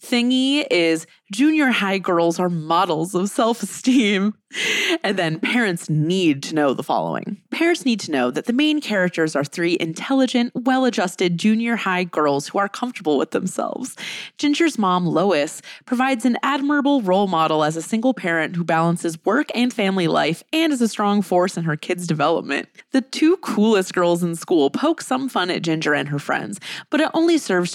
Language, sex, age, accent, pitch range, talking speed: English, female, 20-39, American, 170-250 Hz, 180 wpm